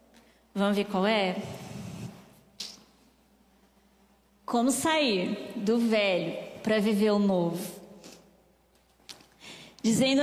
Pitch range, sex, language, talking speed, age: 200-270 Hz, female, Portuguese, 75 wpm, 20-39